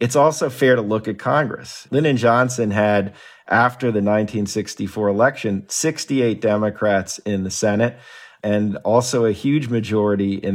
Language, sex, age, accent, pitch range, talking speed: English, male, 40-59, American, 105-125 Hz, 140 wpm